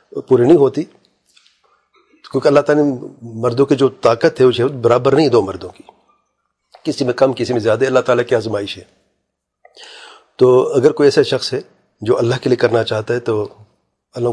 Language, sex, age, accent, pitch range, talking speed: English, male, 40-59, Indian, 125-155 Hz, 185 wpm